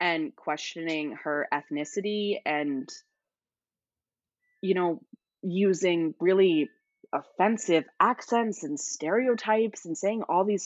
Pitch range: 145-210 Hz